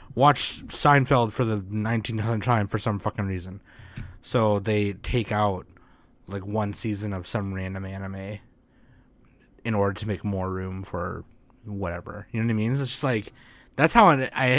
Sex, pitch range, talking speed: male, 100-125 Hz, 165 wpm